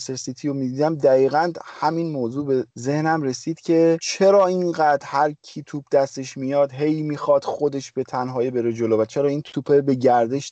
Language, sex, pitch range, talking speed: Persian, male, 125-150 Hz, 165 wpm